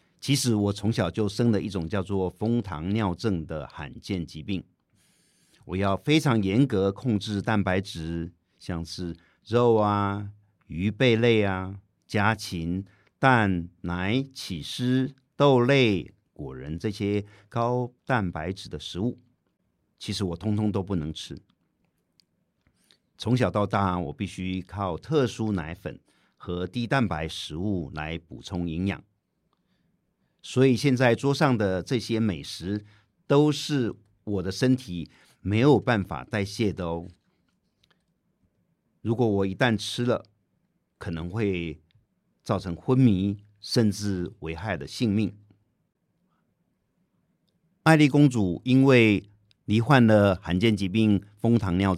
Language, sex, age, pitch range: Chinese, male, 50-69, 95-120 Hz